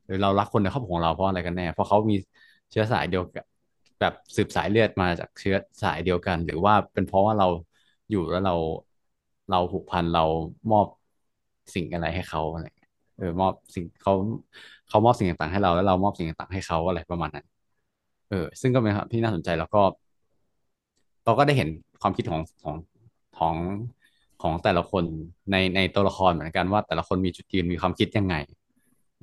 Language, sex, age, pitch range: Thai, male, 20-39, 90-110 Hz